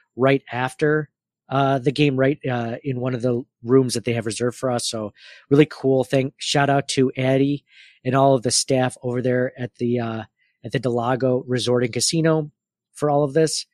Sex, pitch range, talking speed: male, 125-145 Hz, 200 wpm